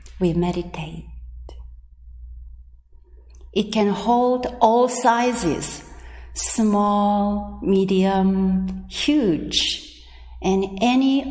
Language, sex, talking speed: English, female, 65 wpm